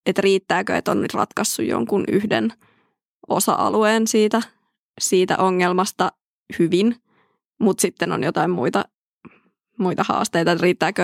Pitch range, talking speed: 180-215 Hz, 110 wpm